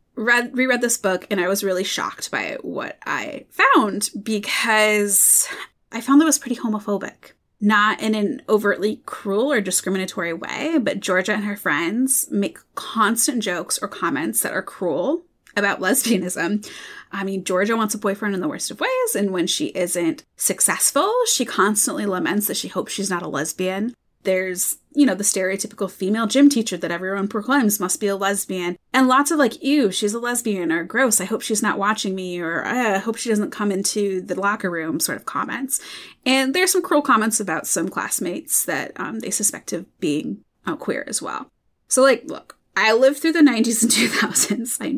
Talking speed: 185 wpm